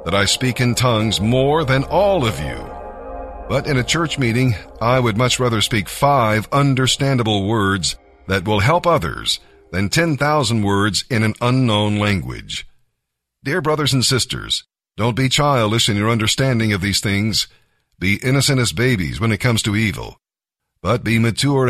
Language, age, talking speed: English, 50-69, 165 wpm